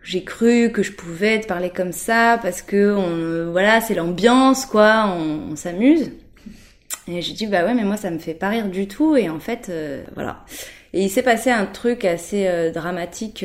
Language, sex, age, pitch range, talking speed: French, female, 20-39, 170-210 Hz, 210 wpm